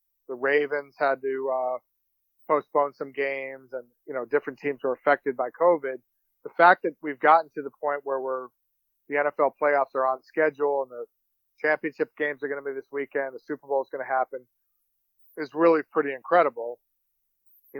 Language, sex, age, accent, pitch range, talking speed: English, male, 40-59, American, 135-150 Hz, 185 wpm